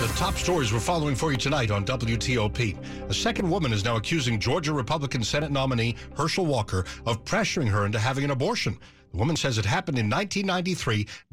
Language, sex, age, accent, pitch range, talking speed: English, male, 60-79, American, 105-145 Hz, 190 wpm